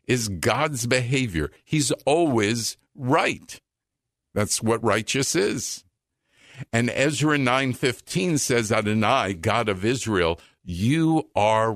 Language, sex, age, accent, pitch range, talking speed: English, male, 50-69, American, 105-140 Hz, 100 wpm